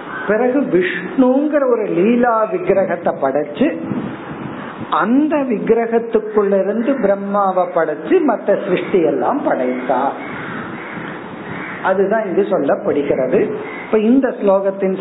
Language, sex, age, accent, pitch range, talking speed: Tamil, male, 50-69, native, 165-235 Hz, 75 wpm